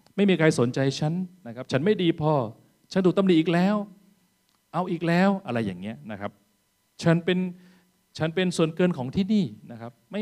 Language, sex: Thai, male